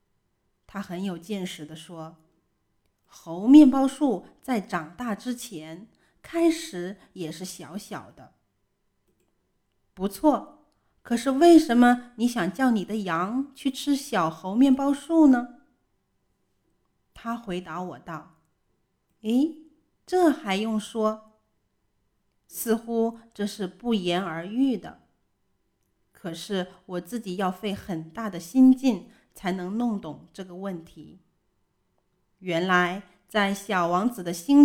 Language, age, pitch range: Chinese, 30-49, 170-245 Hz